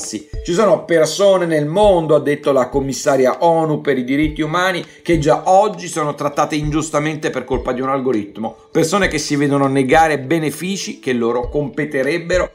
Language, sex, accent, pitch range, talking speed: Italian, male, native, 140-165 Hz, 165 wpm